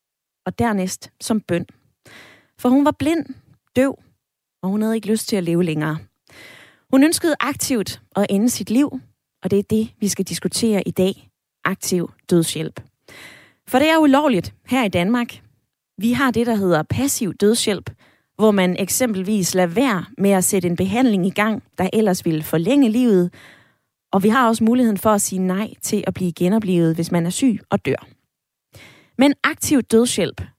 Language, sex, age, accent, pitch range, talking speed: Danish, female, 20-39, native, 180-235 Hz, 175 wpm